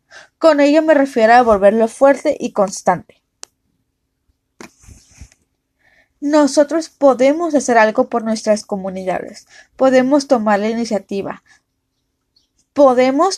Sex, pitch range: female, 225-275 Hz